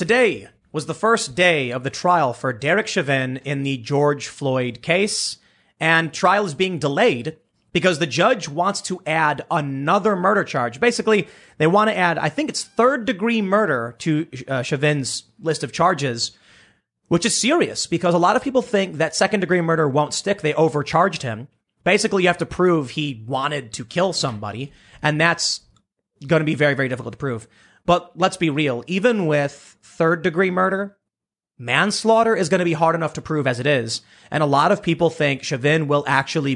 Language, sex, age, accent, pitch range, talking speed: English, male, 30-49, American, 140-185 Hz, 185 wpm